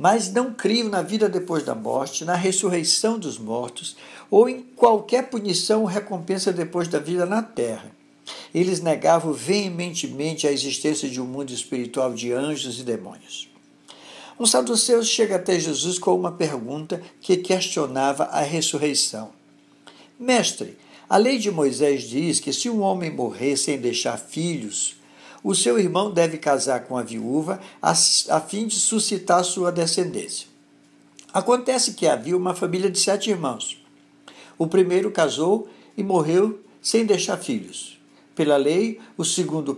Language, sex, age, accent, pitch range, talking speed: Portuguese, male, 60-79, Brazilian, 155-210 Hz, 145 wpm